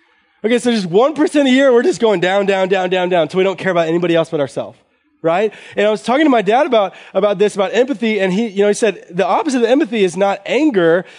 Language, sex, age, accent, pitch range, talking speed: English, male, 20-39, American, 185-235 Hz, 270 wpm